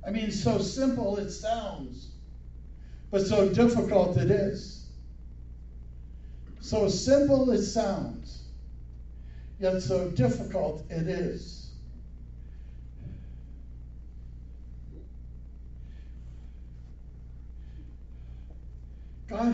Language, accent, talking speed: English, American, 65 wpm